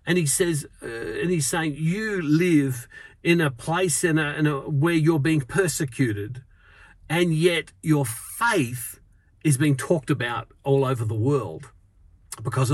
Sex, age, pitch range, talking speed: male, 50-69, 115-160 Hz, 155 wpm